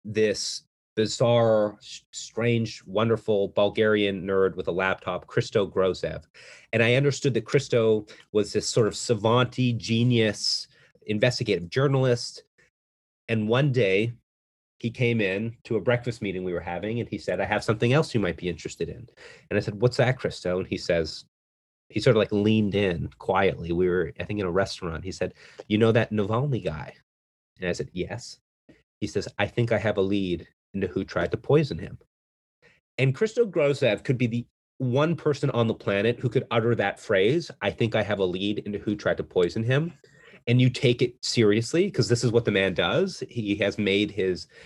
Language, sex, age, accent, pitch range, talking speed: English, male, 30-49, American, 95-120 Hz, 190 wpm